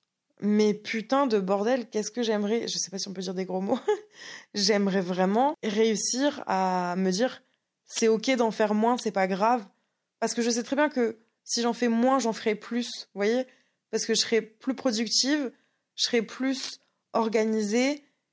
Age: 20-39